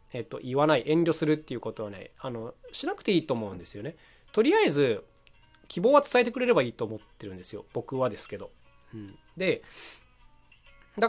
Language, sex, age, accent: Japanese, male, 20-39, native